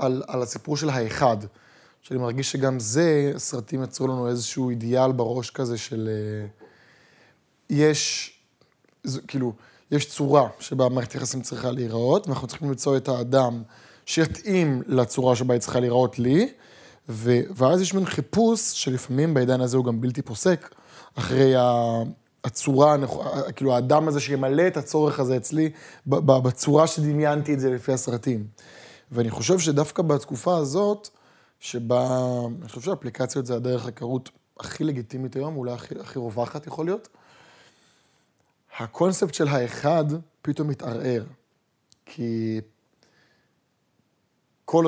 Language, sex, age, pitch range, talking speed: Hebrew, male, 20-39, 120-150 Hz, 125 wpm